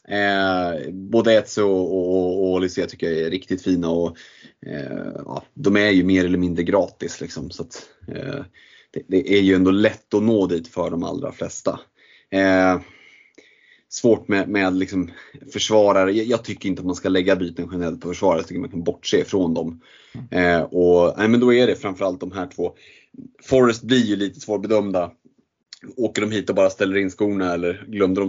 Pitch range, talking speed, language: 90-105 Hz, 180 wpm, Swedish